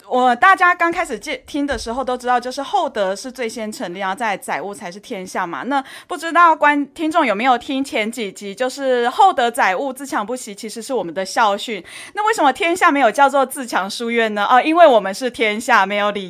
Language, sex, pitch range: Chinese, female, 220-290 Hz